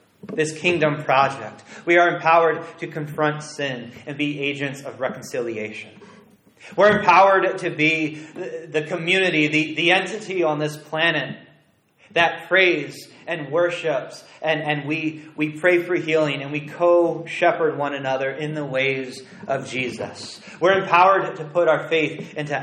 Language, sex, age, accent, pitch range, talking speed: English, male, 30-49, American, 140-170 Hz, 145 wpm